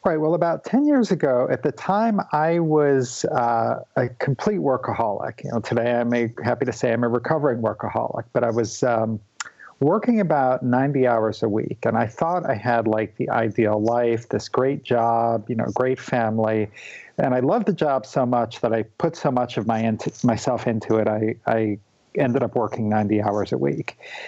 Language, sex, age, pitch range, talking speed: English, male, 50-69, 110-135 Hz, 195 wpm